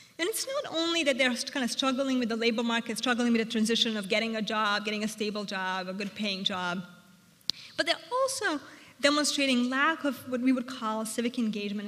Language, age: English, 30-49